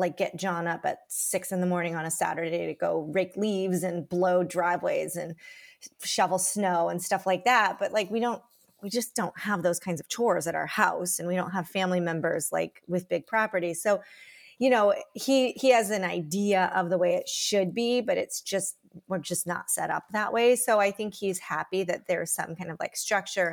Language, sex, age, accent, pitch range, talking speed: English, female, 30-49, American, 175-215 Hz, 220 wpm